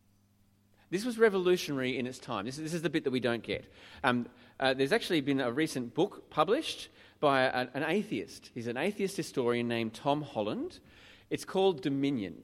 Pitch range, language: 120-180 Hz, English